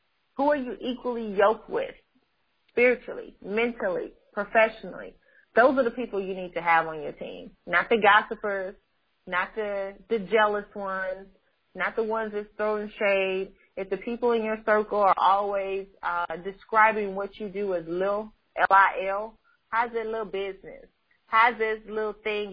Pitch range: 195-235 Hz